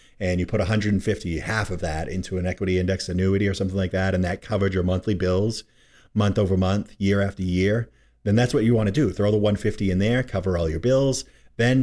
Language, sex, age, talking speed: English, male, 30-49, 230 wpm